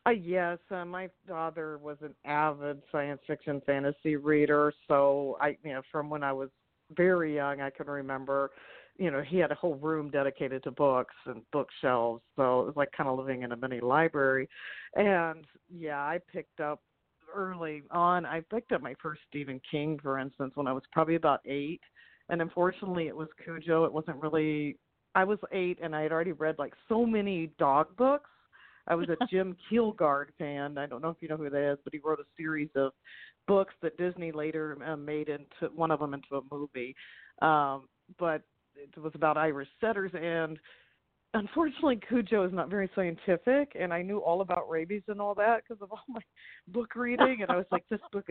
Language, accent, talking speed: English, American, 200 wpm